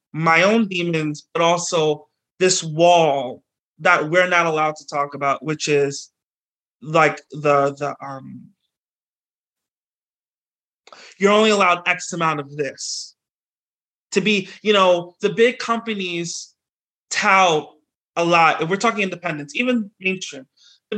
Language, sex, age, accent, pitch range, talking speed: English, male, 30-49, American, 150-190 Hz, 125 wpm